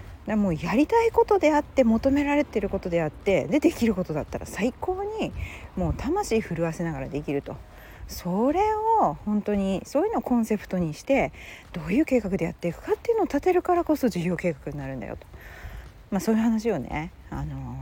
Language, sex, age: Japanese, female, 40-59